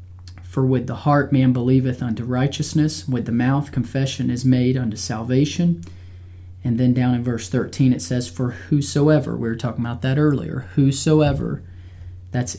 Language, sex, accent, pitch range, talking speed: English, male, American, 105-140 Hz, 160 wpm